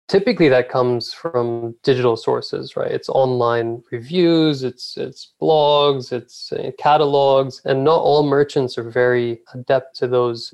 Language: English